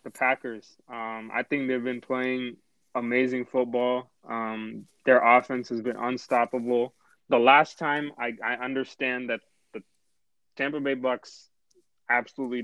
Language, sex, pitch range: English, male, 120-130 Hz